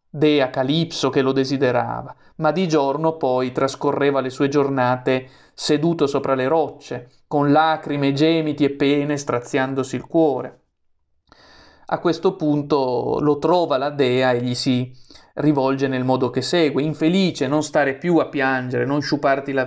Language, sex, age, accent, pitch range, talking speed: Italian, male, 30-49, native, 135-155 Hz, 150 wpm